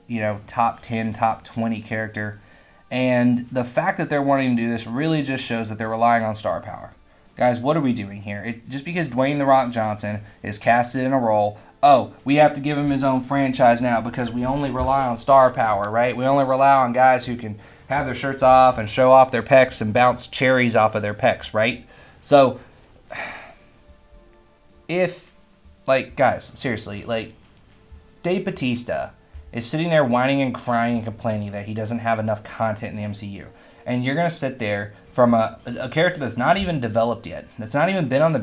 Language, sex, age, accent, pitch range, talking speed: English, male, 20-39, American, 110-130 Hz, 205 wpm